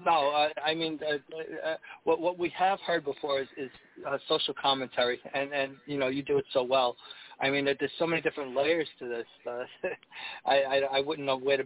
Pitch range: 130-145 Hz